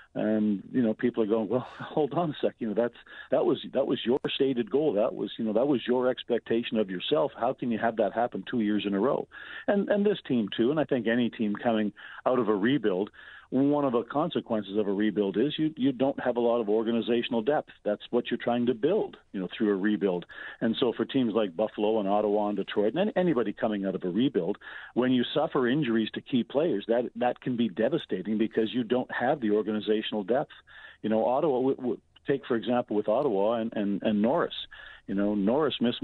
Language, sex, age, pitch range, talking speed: English, male, 50-69, 110-130 Hz, 230 wpm